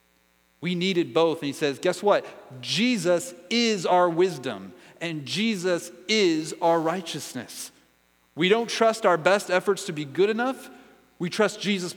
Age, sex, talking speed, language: 40-59, male, 150 wpm, English